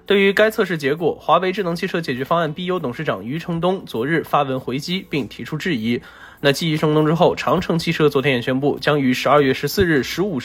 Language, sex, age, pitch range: Chinese, male, 20-39, 145-190 Hz